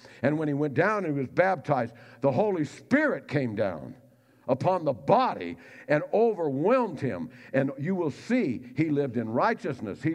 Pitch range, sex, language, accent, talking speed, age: 120-160 Hz, male, English, American, 170 wpm, 60-79